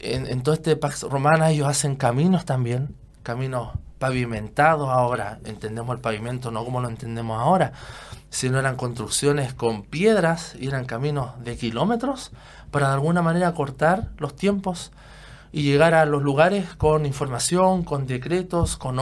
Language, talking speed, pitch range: Spanish, 150 wpm, 135-170 Hz